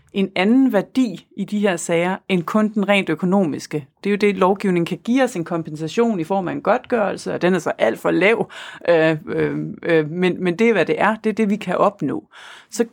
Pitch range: 170-220 Hz